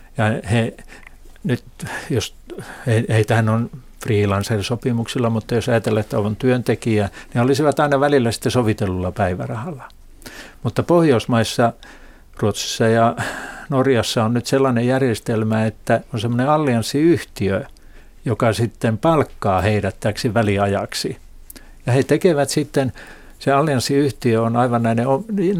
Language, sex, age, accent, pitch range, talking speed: Finnish, male, 60-79, native, 110-135 Hz, 115 wpm